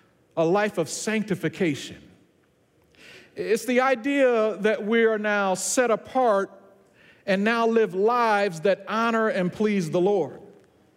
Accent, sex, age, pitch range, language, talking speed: American, male, 50-69, 180-255 Hz, English, 125 wpm